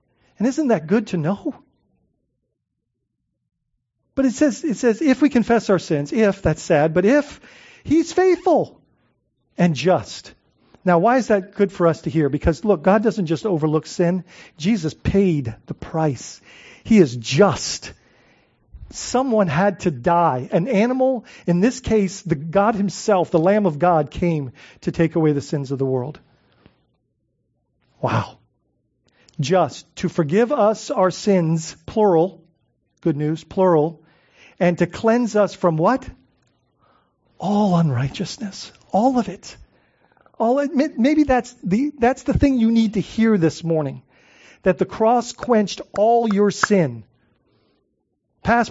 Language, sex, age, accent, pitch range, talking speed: English, male, 40-59, American, 165-230 Hz, 145 wpm